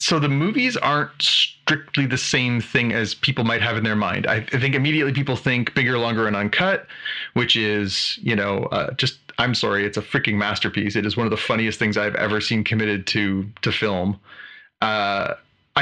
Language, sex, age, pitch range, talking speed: English, male, 30-49, 110-135 Hz, 195 wpm